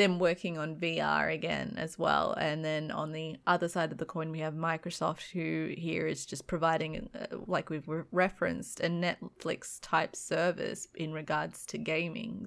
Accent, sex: Australian, female